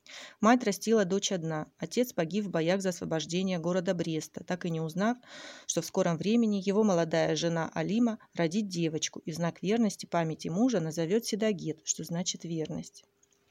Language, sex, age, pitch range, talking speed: Russian, female, 30-49, 170-220 Hz, 165 wpm